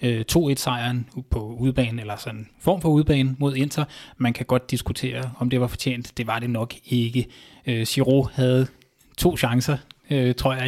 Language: Danish